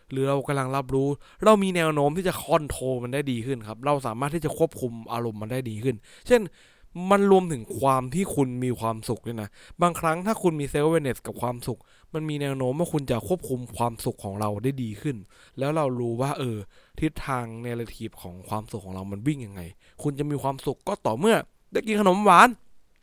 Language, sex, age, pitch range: English, male, 20-39, 110-150 Hz